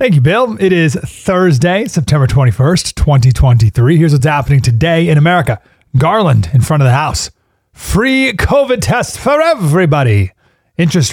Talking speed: 145 wpm